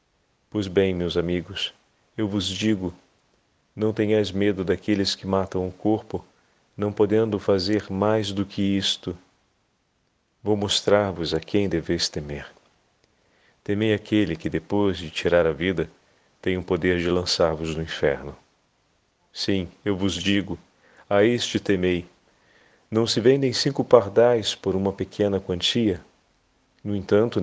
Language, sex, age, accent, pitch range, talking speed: Portuguese, male, 40-59, Brazilian, 90-110 Hz, 135 wpm